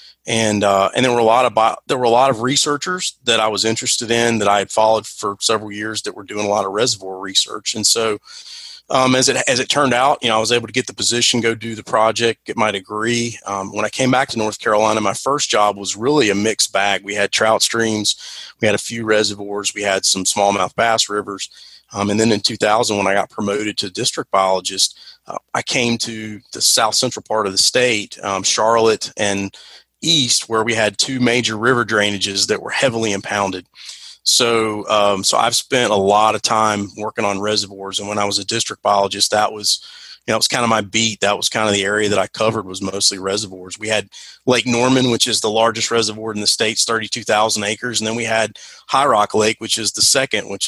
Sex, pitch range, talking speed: male, 100-115 Hz, 230 wpm